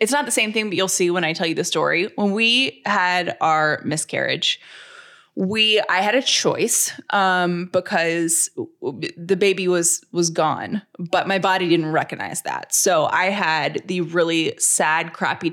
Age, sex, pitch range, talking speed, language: 20-39, female, 170-210 Hz, 170 wpm, English